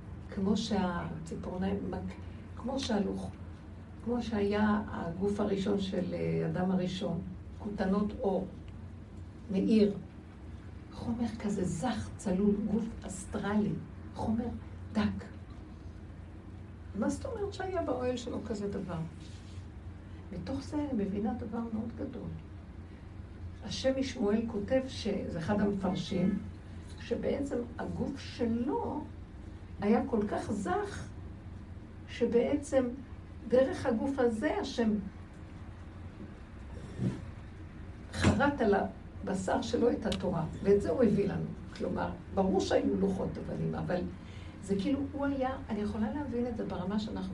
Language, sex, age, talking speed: Hebrew, female, 60-79, 105 wpm